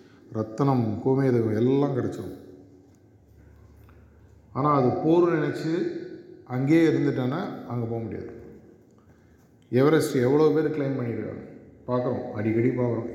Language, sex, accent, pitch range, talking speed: Tamil, male, native, 110-135 Hz, 95 wpm